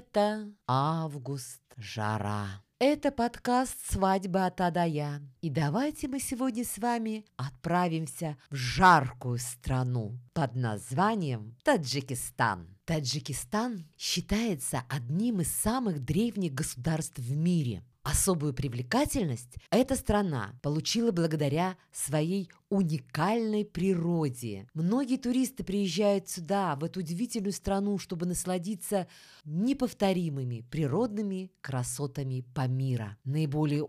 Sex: female